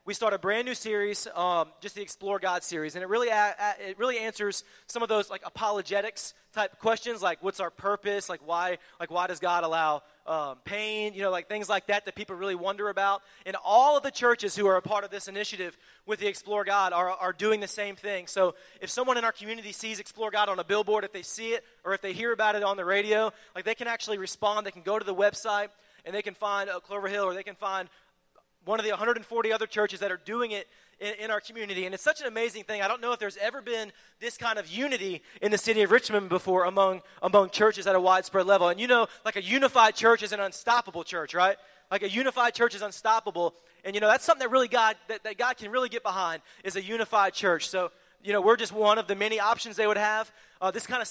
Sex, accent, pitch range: male, American, 195-220 Hz